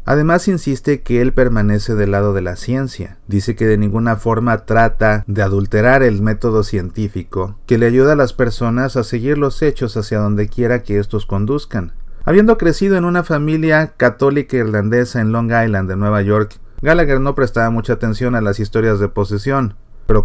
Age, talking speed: 30-49, 180 wpm